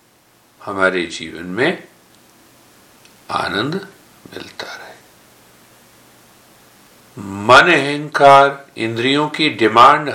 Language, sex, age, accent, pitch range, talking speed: Hindi, male, 50-69, native, 110-140 Hz, 65 wpm